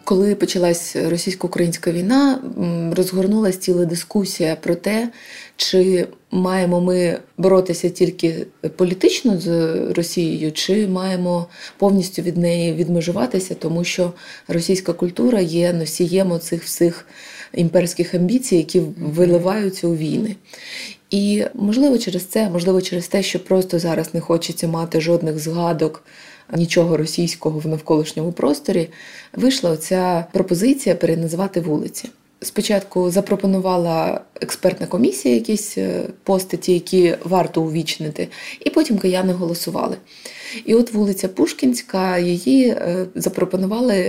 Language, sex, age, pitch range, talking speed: Ukrainian, female, 20-39, 170-195 Hz, 110 wpm